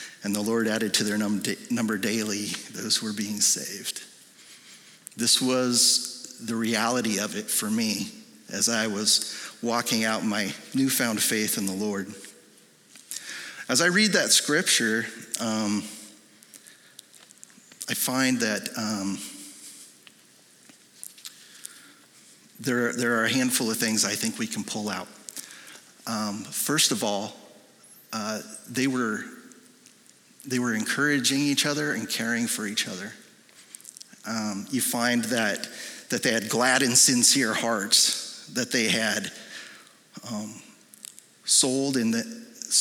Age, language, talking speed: 40-59, English, 125 wpm